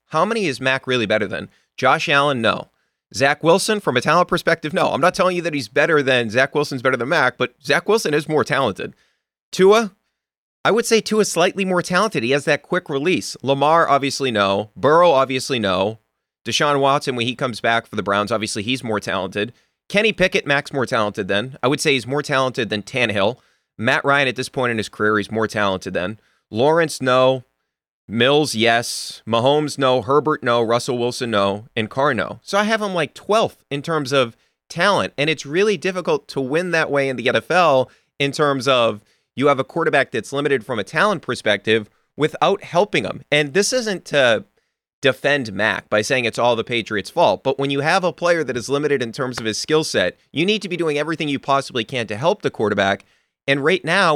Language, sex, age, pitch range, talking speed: English, male, 30-49, 115-155 Hz, 210 wpm